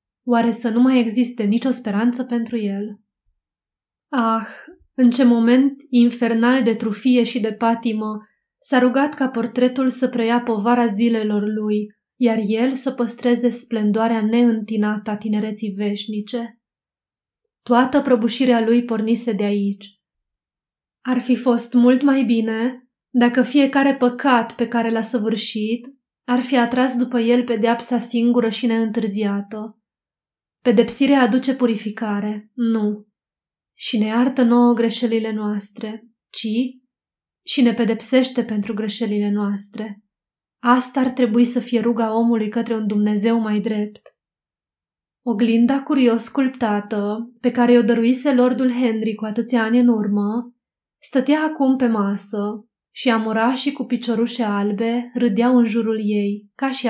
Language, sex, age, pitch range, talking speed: Romanian, female, 20-39, 215-245 Hz, 130 wpm